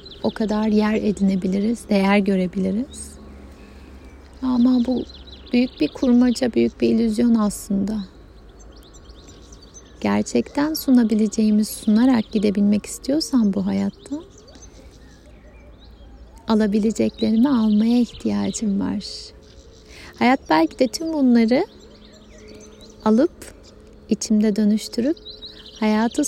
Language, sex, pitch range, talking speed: Turkish, female, 200-250 Hz, 80 wpm